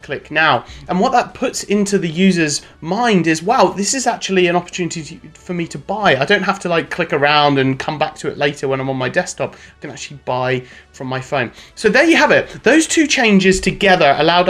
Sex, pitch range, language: male, 140-200 Hz, English